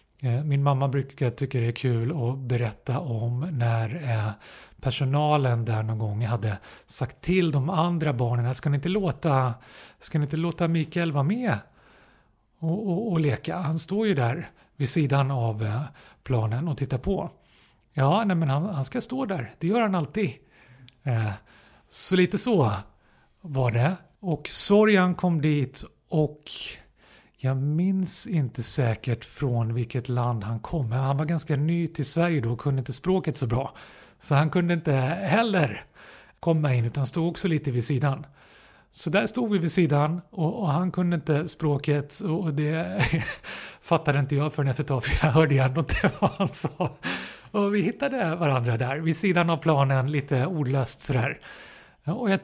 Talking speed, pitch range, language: 165 wpm, 125-170 Hz, English